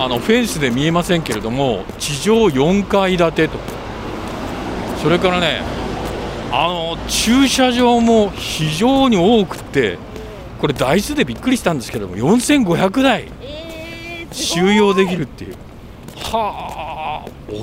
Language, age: Japanese, 40-59